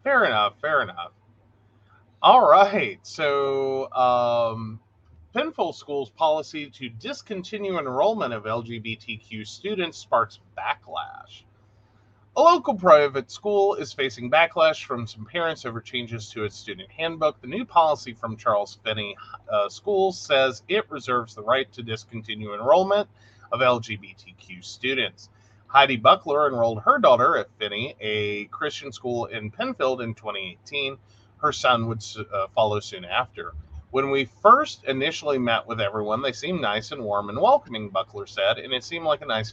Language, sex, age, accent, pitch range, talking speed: English, male, 30-49, American, 105-145 Hz, 145 wpm